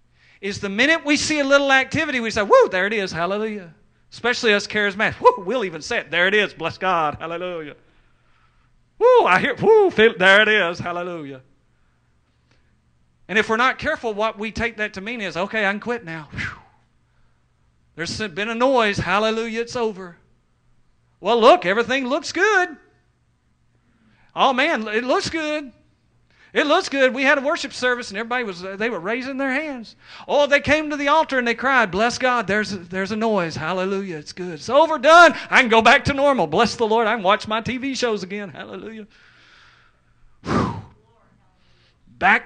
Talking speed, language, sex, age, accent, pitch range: 180 wpm, English, male, 40-59, American, 165-250 Hz